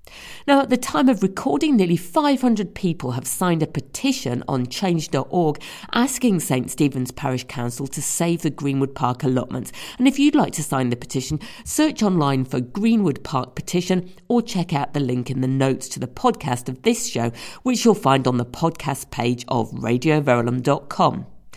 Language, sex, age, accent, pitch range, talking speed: English, female, 50-69, British, 130-220 Hz, 175 wpm